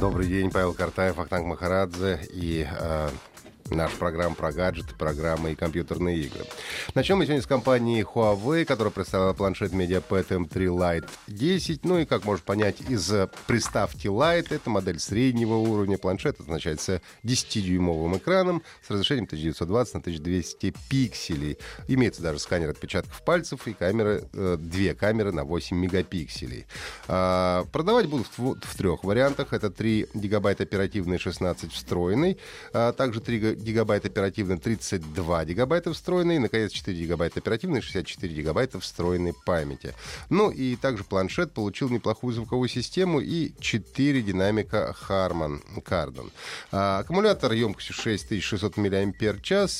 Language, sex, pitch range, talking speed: Russian, male, 90-120 Hz, 130 wpm